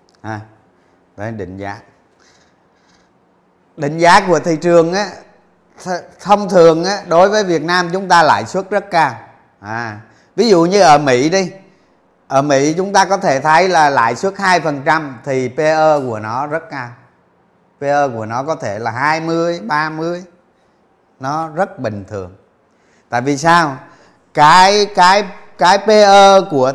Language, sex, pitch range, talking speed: Vietnamese, male, 130-180 Hz, 150 wpm